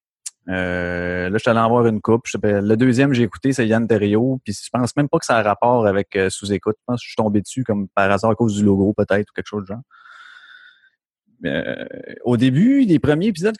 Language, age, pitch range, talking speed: French, 30-49, 105-140 Hz, 245 wpm